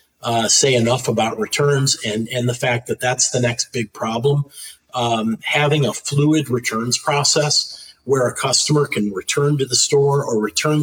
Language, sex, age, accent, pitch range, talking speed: English, male, 40-59, American, 120-150 Hz, 170 wpm